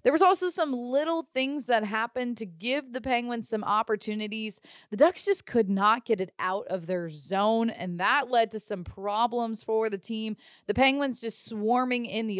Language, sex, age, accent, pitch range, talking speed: English, female, 20-39, American, 195-265 Hz, 195 wpm